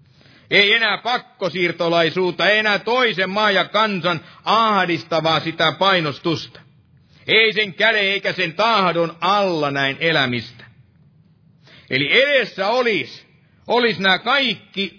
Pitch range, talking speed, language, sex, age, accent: 155-215 Hz, 110 wpm, Finnish, male, 50-69, native